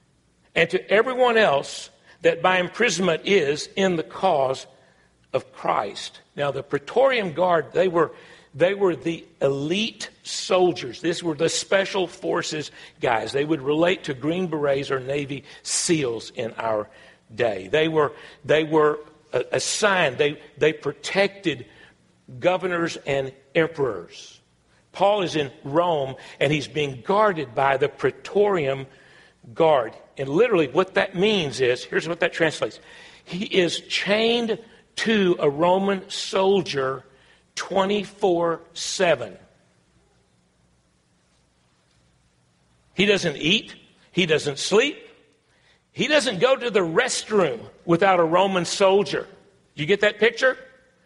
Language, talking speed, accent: English, 120 wpm, American